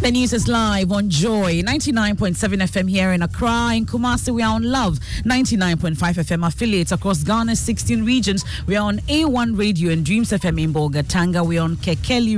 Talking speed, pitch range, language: 185 wpm, 165-225 Hz, English